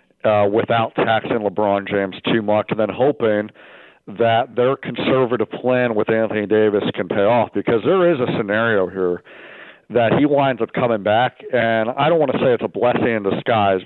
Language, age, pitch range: English, 50-69, 105-125 Hz